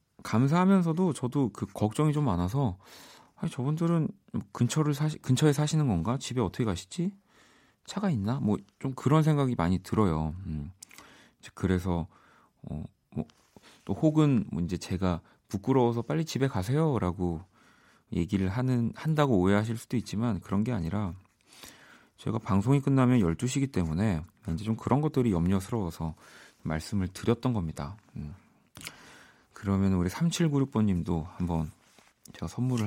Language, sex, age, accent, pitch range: Korean, male, 40-59, native, 90-135 Hz